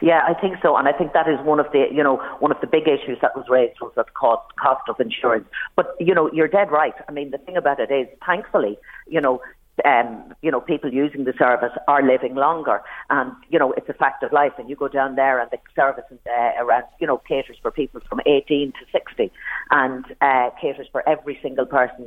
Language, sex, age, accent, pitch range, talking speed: English, female, 50-69, Irish, 125-160 Hz, 240 wpm